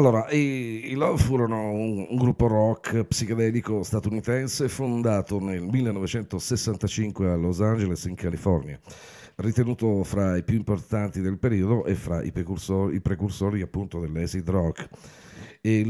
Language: Italian